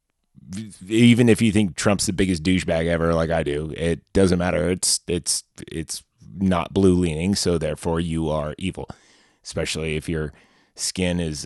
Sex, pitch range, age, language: male, 85-105 Hz, 30-49, English